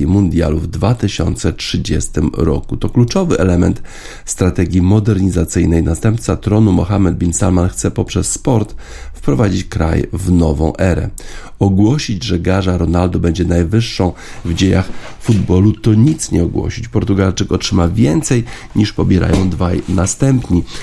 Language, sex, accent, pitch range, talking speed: Polish, male, native, 85-110 Hz, 120 wpm